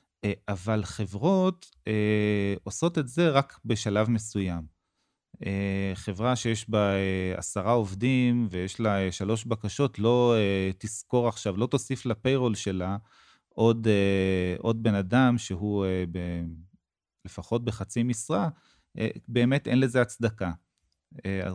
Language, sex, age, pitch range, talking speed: Hebrew, male, 30-49, 100-125 Hz, 130 wpm